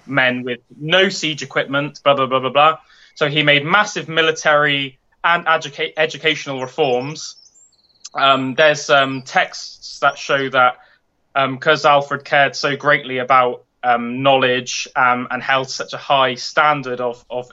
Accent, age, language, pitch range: British, 20-39, English, 130-155 Hz